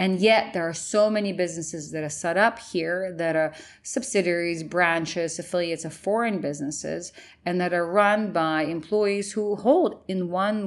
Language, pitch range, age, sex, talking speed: English, 160-195 Hz, 30-49, female, 170 wpm